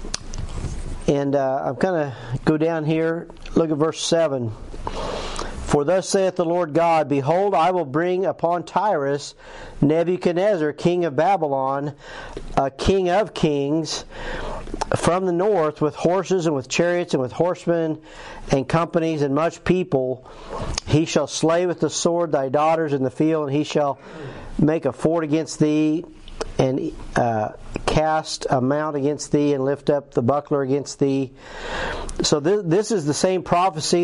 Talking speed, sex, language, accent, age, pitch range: 155 wpm, male, English, American, 50-69, 145-175 Hz